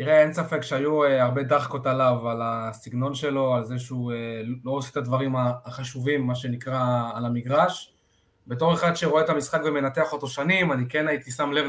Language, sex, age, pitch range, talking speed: Hebrew, male, 20-39, 125-155 Hz, 180 wpm